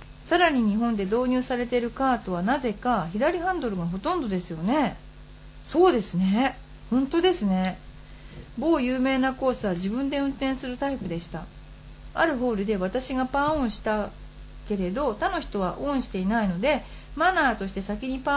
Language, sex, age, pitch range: Japanese, female, 40-59, 210-305 Hz